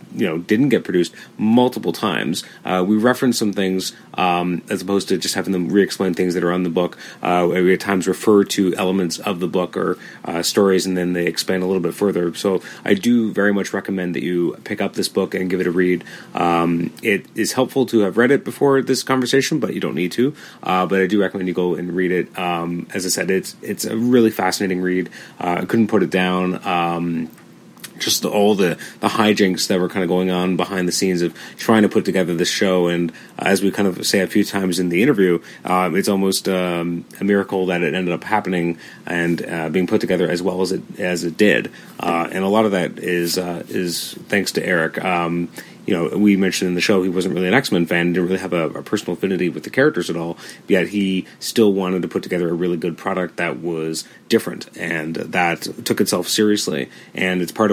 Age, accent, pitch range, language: 30-49, American, 90-100 Hz, English